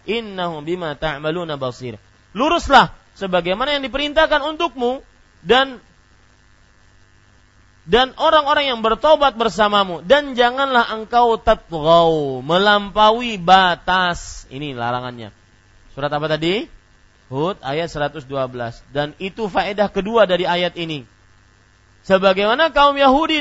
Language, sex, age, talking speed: Malay, male, 30-49, 100 wpm